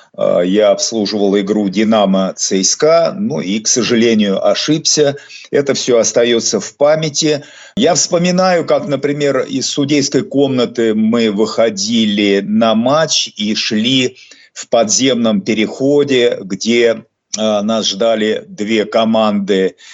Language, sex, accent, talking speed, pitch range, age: Russian, male, native, 110 wpm, 110-155 Hz, 50-69